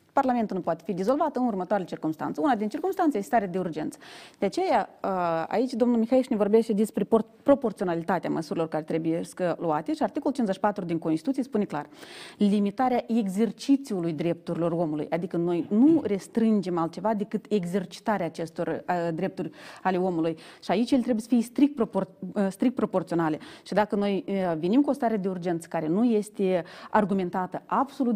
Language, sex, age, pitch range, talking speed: Romanian, female, 30-49, 180-235 Hz, 160 wpm